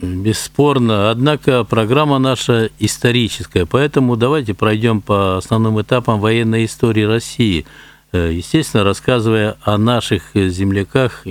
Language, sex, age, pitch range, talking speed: Russian, male, 60-79, 95-120 Hz, 100 wpm